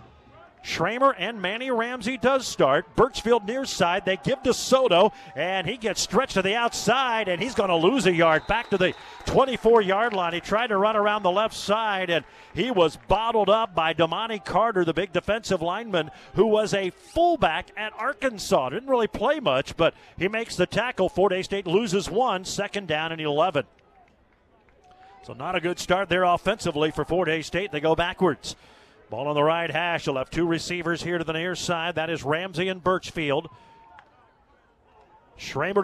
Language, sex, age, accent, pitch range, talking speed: English, male, 40-59, American, 170-215 Hz, 180 wpm